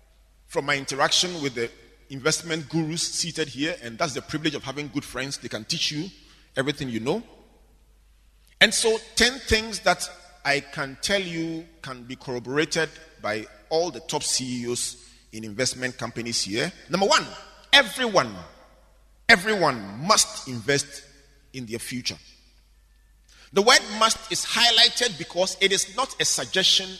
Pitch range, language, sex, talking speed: 130-195 Hz, English, male, 145 wpm